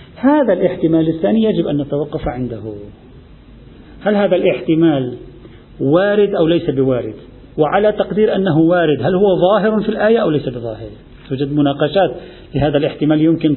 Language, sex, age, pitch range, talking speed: Arabic, male, 50-69, 135-200 Hz, 135 wpm